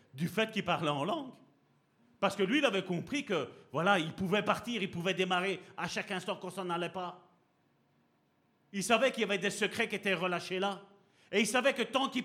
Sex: male